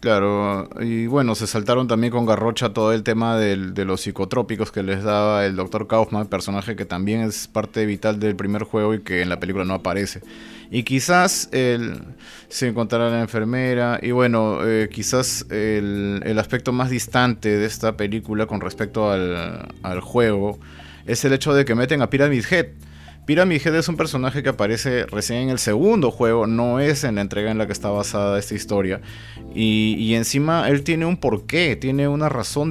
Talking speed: 190 wpm